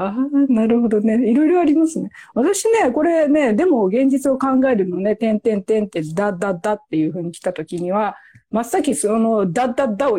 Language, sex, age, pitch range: Japanese, female, 40-59, 200-290 Hz